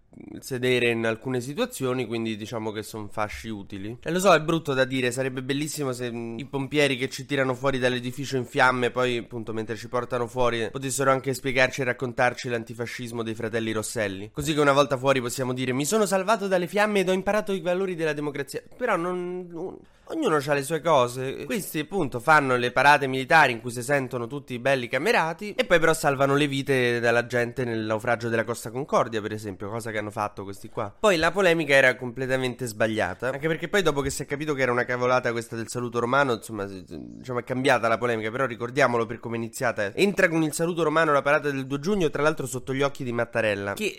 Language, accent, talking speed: Italian, native, 215 wpm